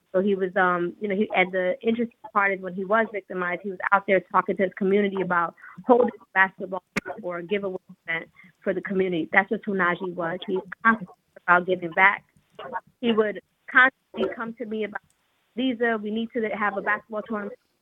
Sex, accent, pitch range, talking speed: female, American, 190-220 Hz, 205 wpm